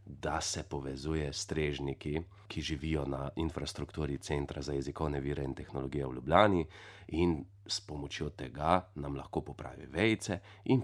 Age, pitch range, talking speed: 30-49, 75-95 Hz, 140 wpm